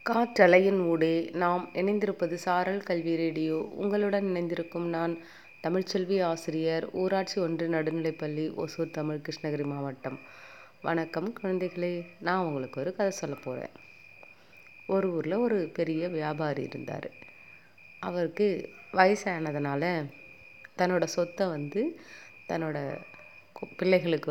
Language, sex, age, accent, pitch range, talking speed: Tamil, female, 30-49, native, 155-185 Hz, 100 wpm